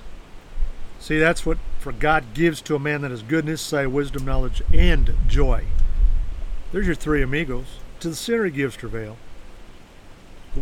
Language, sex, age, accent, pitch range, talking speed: English, male, 50-69, American, 95-145 Hz, 155 wpm